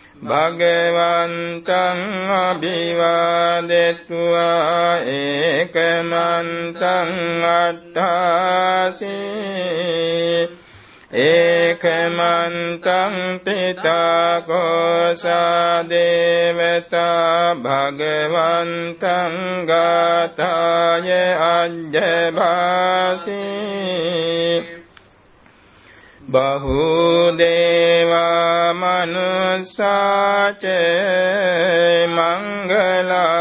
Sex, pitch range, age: male, 170-185 Hz, 60-79